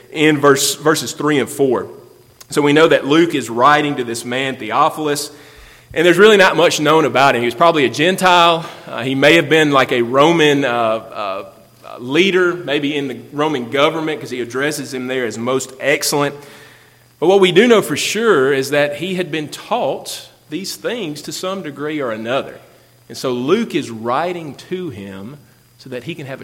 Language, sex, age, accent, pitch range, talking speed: English, male, 30-49, American, 130-170 Hz, 195 wpm